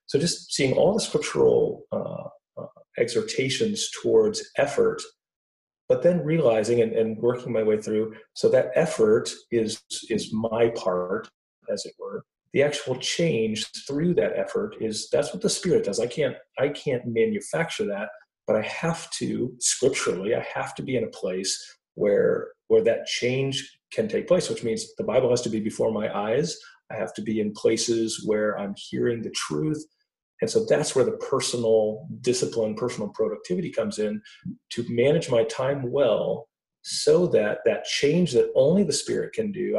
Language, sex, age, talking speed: English, male, 40-59, 170 wpm